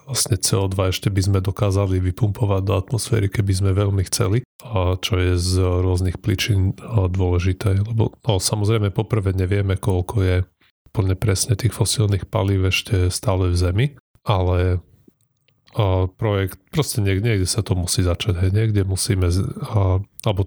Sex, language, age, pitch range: male, Slovak, 30-49, 95-115 Hz